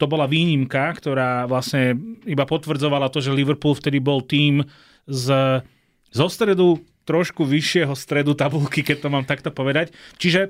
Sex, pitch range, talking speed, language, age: male, 115-150 Hz, 145 wpm, Slovak, 30-49